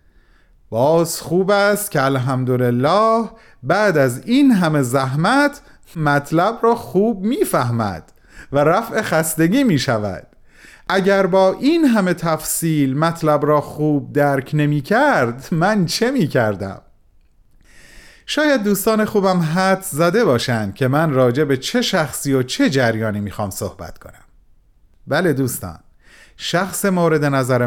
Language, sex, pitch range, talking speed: Persian, male, 125-200 Hz, 125 wpm